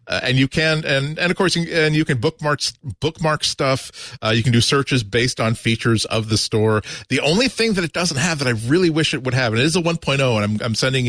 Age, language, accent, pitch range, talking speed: 40-59, English, American, 110-140 Hz, 265 wpm